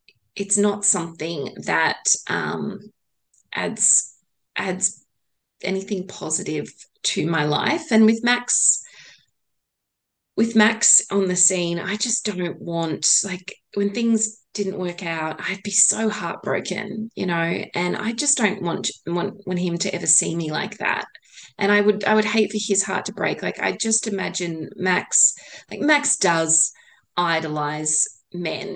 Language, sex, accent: English, female, Australian